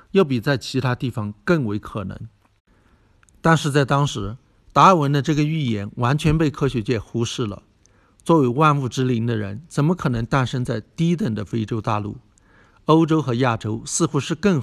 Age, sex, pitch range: 60-79, male, 110-145 Hz